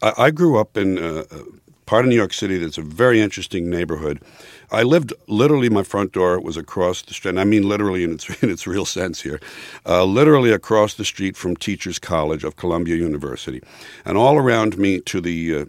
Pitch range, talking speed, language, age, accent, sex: 85-110 Hz, 205 wpm, English, 60-79, American, male